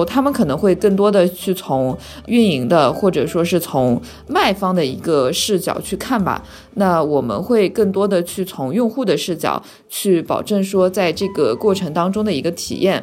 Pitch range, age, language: 175-220 Hz, 20-39, Chinese